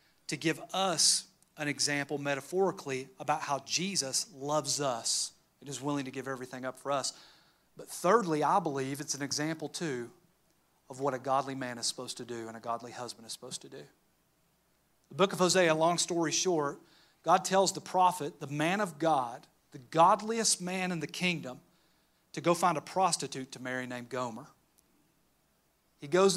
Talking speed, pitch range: 175 wpm, 140-180 Hz